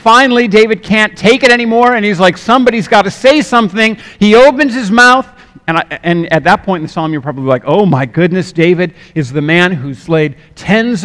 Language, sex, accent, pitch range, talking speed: English, male, American, 150-185 Hz, 210 wpm